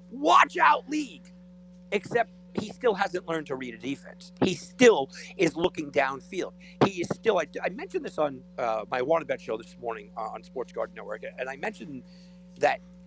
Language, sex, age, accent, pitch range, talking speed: English, male, 50-69, American, 160-185 Hz, 185 wpm